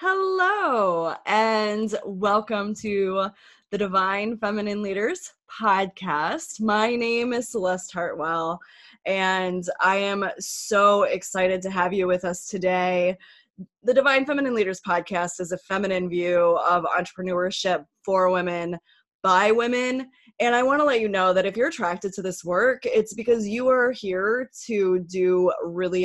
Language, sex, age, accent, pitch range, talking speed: English, female, 20-39, American, 185-230 Hz, 145 wpm